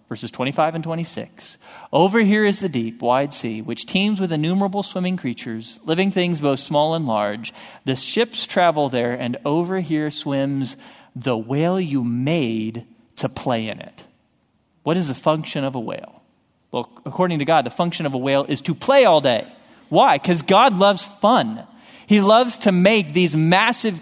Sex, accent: male, American